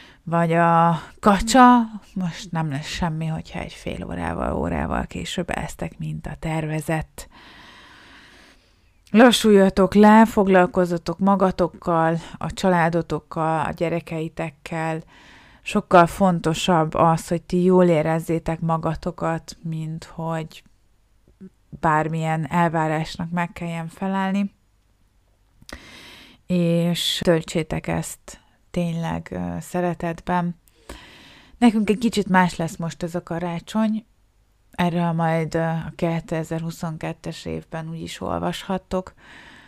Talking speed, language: 90 wpm, Hungarian